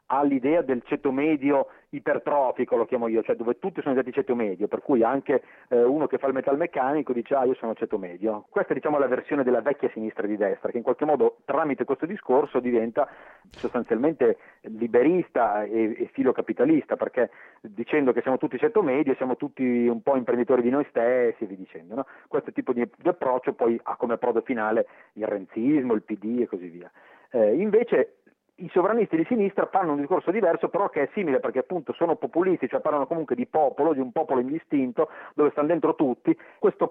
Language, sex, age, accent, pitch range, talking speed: Italian, male, 40-59, native, 115-190 Hz, 200 wpm